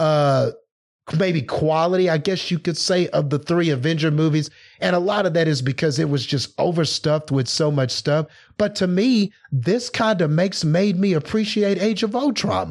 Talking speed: 195 wpm